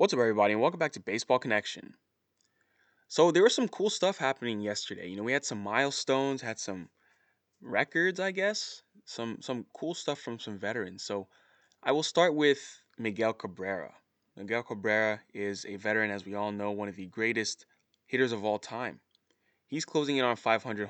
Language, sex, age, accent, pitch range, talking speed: English, male, 20-39, American, 105-130 Hz, 185 wpm